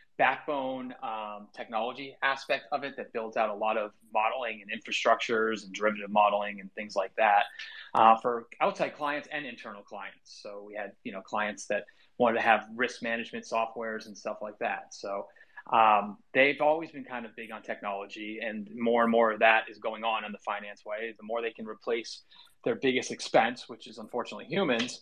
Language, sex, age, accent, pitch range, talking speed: English, male, 30-49, American, 105-125 Hz, 195 wpm